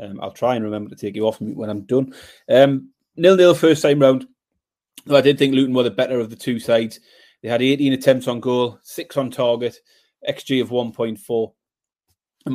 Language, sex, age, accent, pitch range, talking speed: English, male, 30-49, British, 120-155 Hz, 200 wpm